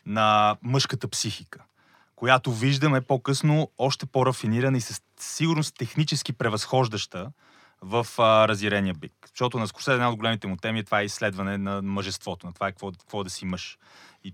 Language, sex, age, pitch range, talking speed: Bulgarian, male, 30-49, 95-115 Hz, 165 wpm